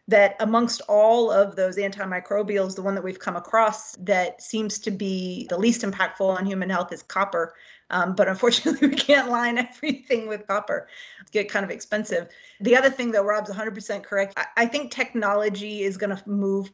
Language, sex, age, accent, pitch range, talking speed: English, female, 30-49, American, 190-225 Hz, 185 wpm